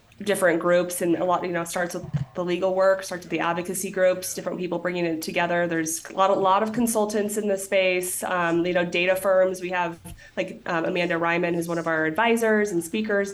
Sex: female